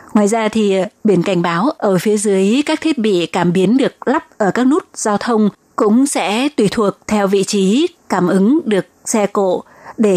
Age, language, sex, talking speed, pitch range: 20-39, Vietnamese, female, 200 wpm, 200-235 Hz